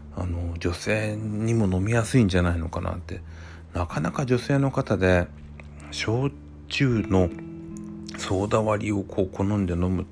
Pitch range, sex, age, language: 85-115 Hz, male, 40-59, Japanese